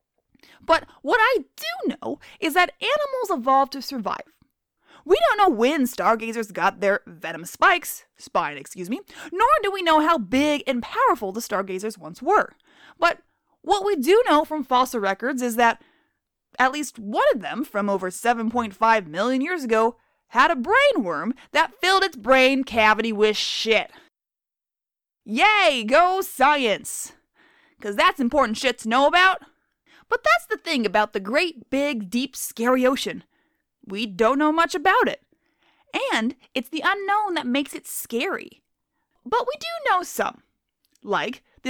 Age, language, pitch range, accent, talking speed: 20-39, English, 230-340 Hz, American, 155 wpm